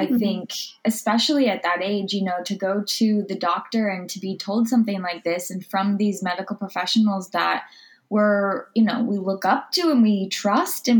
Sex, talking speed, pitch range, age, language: female, 200 wpm, 185-225 Hz, 10-29, English